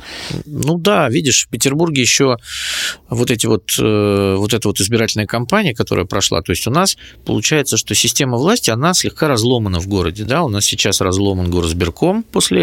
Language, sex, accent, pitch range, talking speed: Russian, male, native, 100-125 Hz, 180 wpm